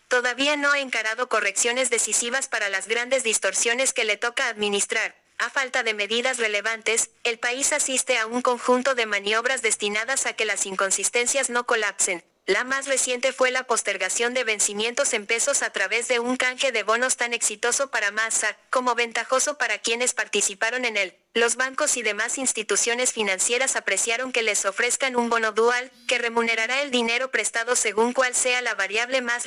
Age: 30-49